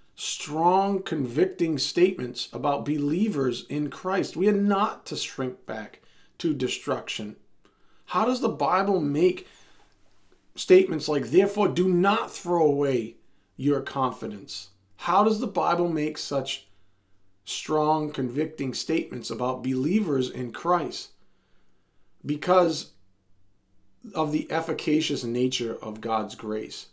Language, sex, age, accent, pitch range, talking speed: English, male, 40-59, American, 115-155 Hz, 110 wpm